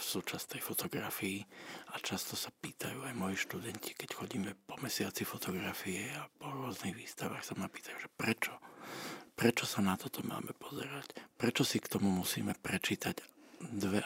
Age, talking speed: 50-69, 160 wpm